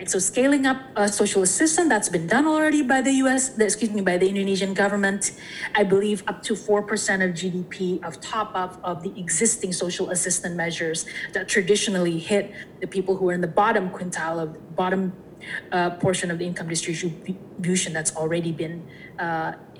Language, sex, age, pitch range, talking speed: English, female, 30-49, 180-220 Hz, 180 wpm